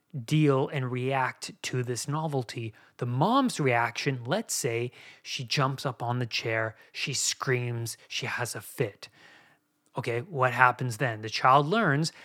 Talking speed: 145 wpm